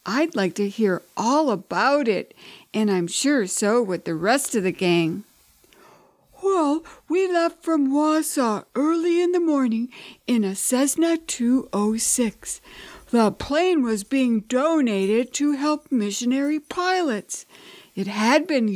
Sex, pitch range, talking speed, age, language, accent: female, 195-290 Hz, 135 wpm, 60-79, English, American